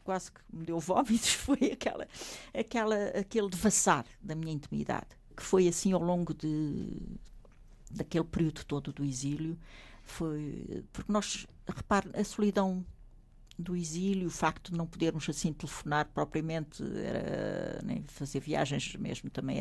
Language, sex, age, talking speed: Portuguese, female, 60-79, 140 wpm